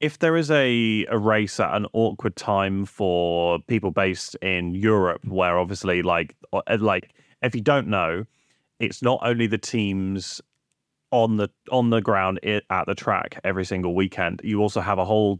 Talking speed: 170 wpm